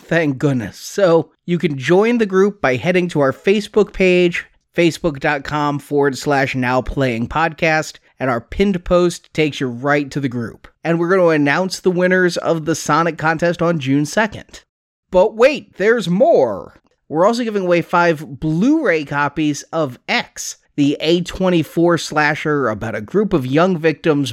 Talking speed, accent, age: 160 wpm, American, 30-49